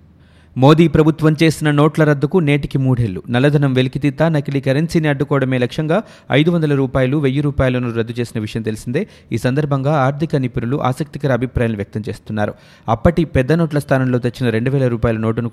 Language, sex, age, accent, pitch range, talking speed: Telugu, male, 30-49, native, 115-145 Hz, 145 wpm